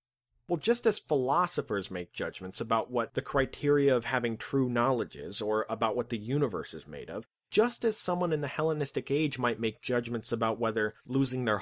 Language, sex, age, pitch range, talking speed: English, male, 30-49, 120-160 Hz, 190 wpm